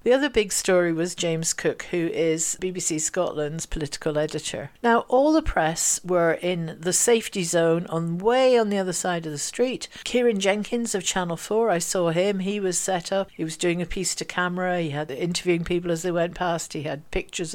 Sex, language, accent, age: female, English, British, 60-79